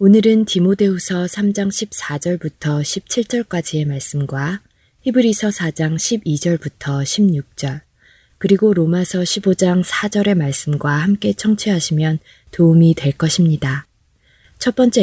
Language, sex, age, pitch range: Korean, female, 20-39, 150-200 Hz